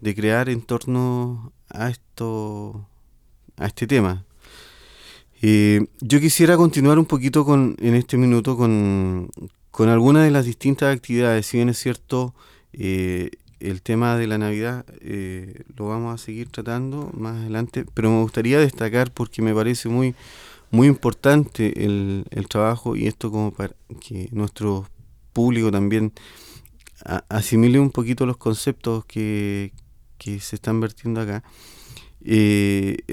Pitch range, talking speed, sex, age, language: 105-125 Hz, 140 wpm, male, 30-49, Spanish